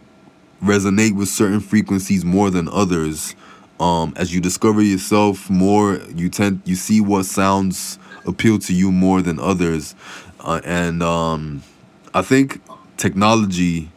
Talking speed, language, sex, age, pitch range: 135 wpm, English, male, 20-39, 85-100 Hz